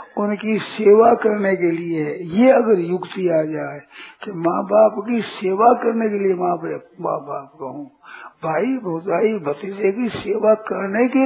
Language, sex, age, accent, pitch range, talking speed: Hindi, male, 50-69, native, 180-235 Hz, 165 wpm